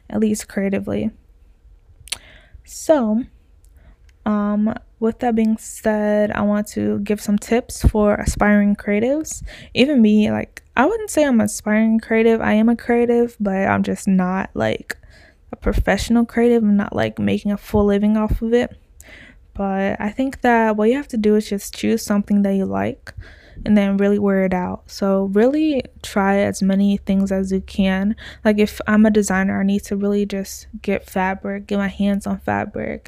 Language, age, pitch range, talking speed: English, 20-39, 195-220 Hz, 175 wpm